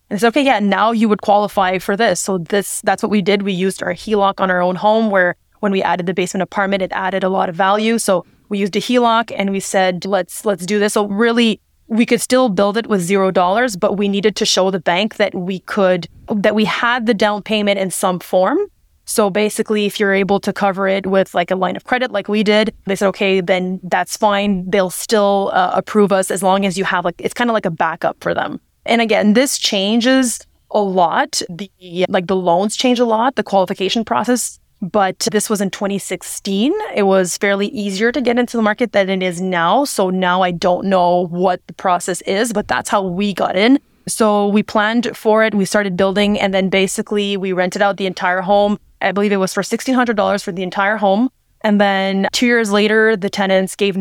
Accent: American